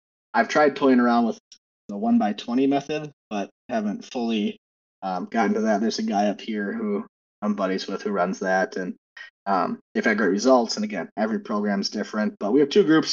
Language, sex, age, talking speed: English, male, 20-39, 210 wpm